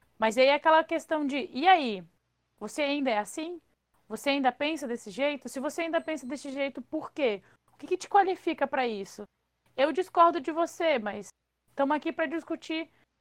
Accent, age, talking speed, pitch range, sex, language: Brazilian, 20-39, 185 wpm, 230-320 Hz, female, Portuguese